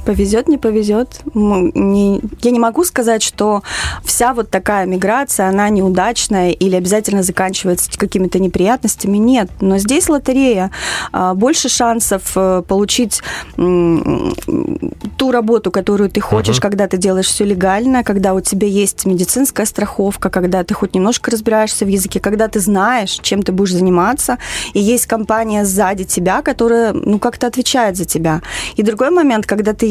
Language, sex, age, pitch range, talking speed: Russian, female, 20-39, 190-230 Hz, 145 wpm